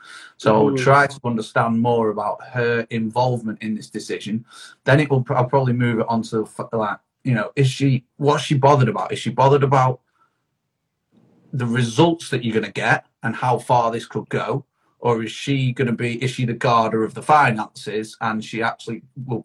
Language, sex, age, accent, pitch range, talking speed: English, male, 30-49, British, 115-140 Hz, 200 wpm